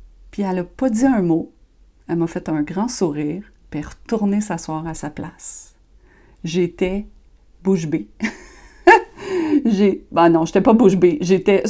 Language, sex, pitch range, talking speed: French, female, 185-265 Hz, 170 wpm